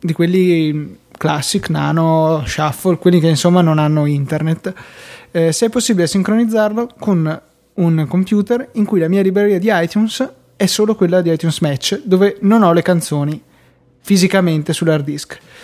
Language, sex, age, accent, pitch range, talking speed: Italian, male, 20-39, native, 155-185 Hz, 155 wpm